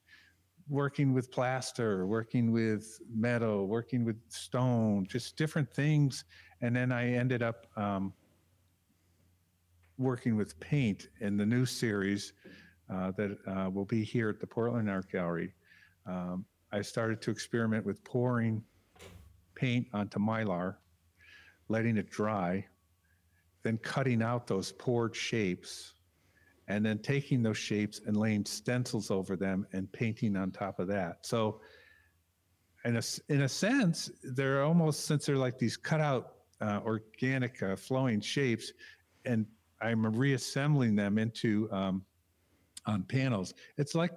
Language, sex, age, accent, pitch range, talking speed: English, male, 50-69, American, 95-125 Hz, 135 wpm